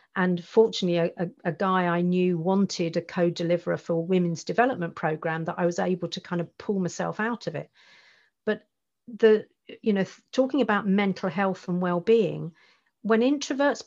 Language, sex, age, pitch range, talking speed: English, female, 50-69, 175-215 Hz, 165 wpm